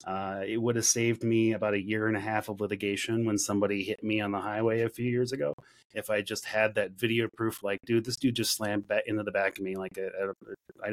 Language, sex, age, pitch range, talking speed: English, male, 30-49, 105-125 Hz, 260 wpm